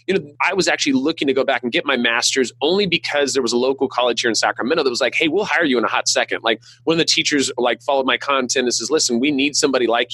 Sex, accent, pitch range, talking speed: male, American, 120-160 Hz, 295 wpm